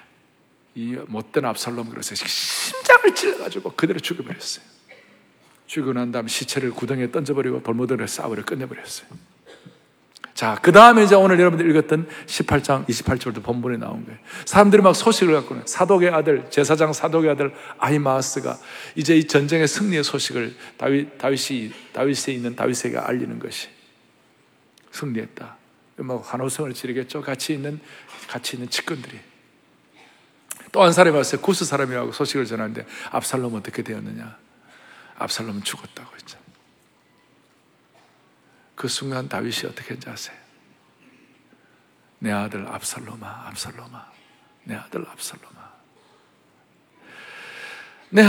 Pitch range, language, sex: 130-190 Hz, Korean, male